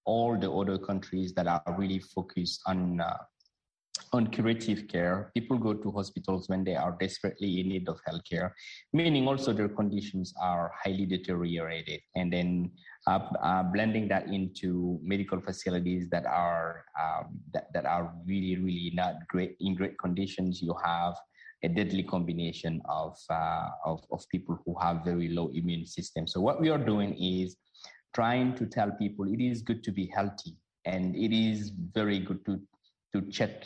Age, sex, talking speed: 20-39, male, 170 wpm